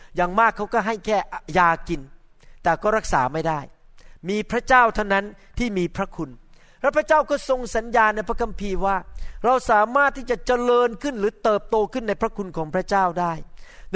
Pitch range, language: 185-245 Hz, Thai